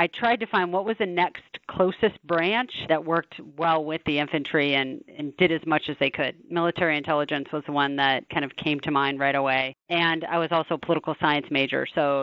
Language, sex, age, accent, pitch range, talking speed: English, female, 40-59, American, 155-195 Hz, 225 wpm